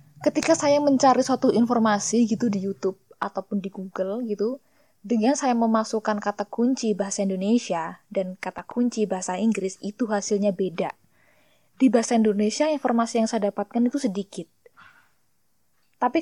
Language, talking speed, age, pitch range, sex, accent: Indonesian, 135 wpm, 20-39, 195-235 Hz, female, native